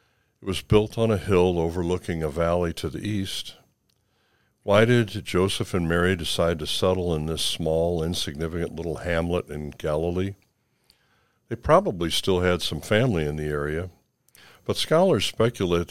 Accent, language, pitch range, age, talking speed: American, English, 80-100 Hz, 60-79, 150 wpm